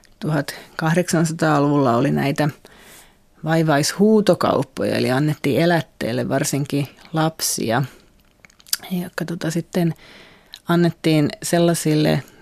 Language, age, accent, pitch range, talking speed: Finnish, 30-49, native, 145-170 Hz, 70 wpm